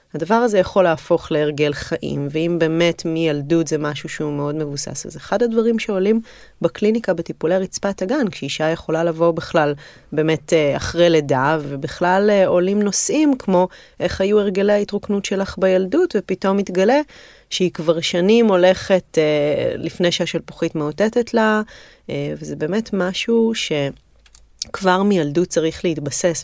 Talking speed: 125 wpm